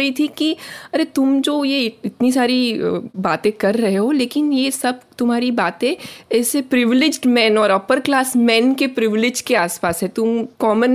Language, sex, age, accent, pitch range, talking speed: Hindi, female, 20-39, native, 195-260 Hz, 170 wpm